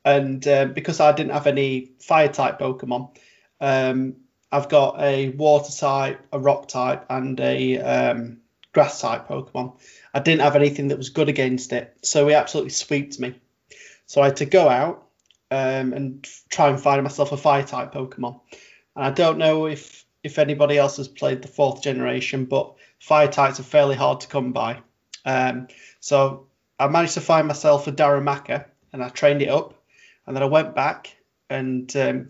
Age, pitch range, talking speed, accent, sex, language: 20-39, 130-150 Hz, 170 wpm, British, male, English